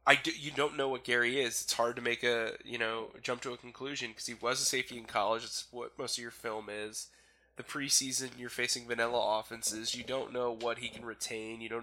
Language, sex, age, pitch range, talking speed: English, male, 10-29, 115-140 Hz, 245 wpm